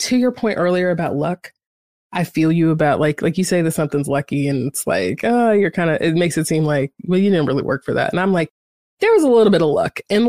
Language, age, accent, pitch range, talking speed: English, 30-49, American, 150-195 Hz, 275 wpm